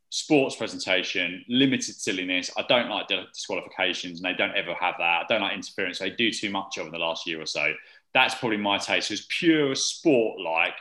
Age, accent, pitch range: 20-39, British, 105-140 Hz